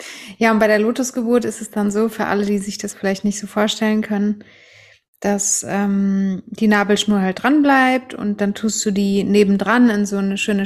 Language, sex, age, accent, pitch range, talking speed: German, female, 20-39, German, 205-230 Hz, 205 wpm